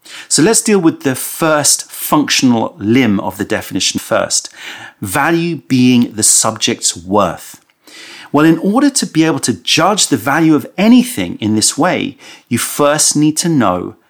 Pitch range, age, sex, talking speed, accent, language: 125-165 Hz, 40-59, male, 160 wpm, British, English